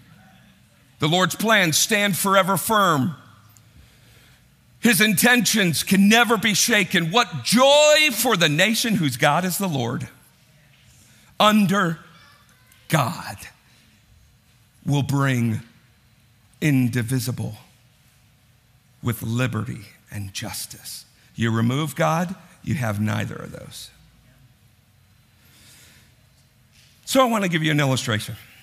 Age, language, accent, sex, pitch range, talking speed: 50-69, English, American, male, 120-180 Hz, 100 wpm